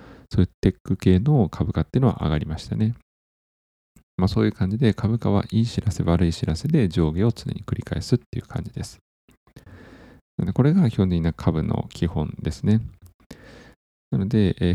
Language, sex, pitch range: Japanese, male, 85-115 Hz